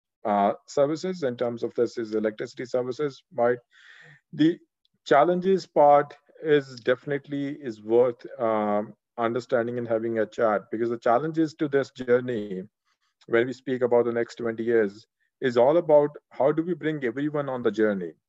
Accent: Indian